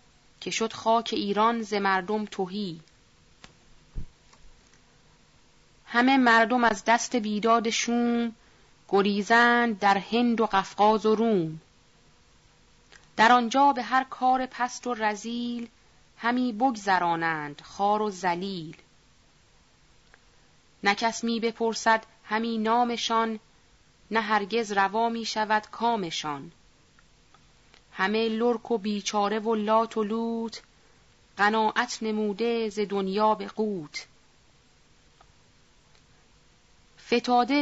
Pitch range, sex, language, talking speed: 195-235 Hz, female, Persian, 95 wpm